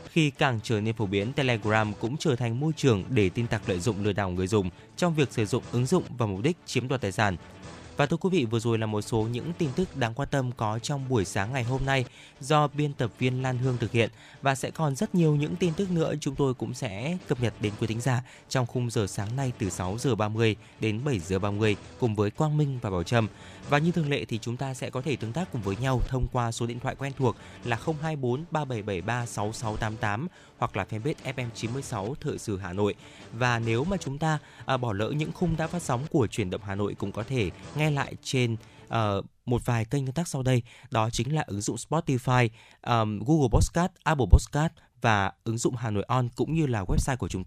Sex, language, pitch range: male, Vietnamese, 110-140 Hz